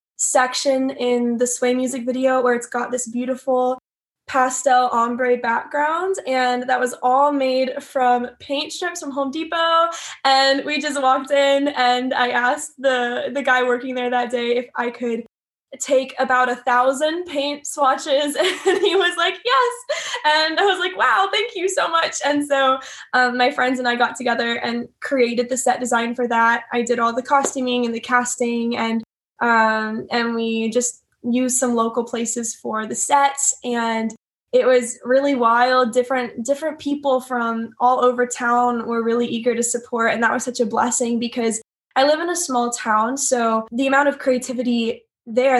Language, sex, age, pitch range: English, female, 10-29, 235-270 Hz